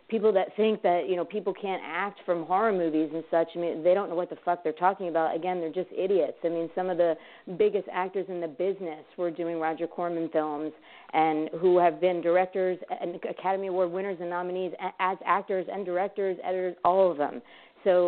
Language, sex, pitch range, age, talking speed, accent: English, female, 165-190 Hz, 40-59, 210 wpm, American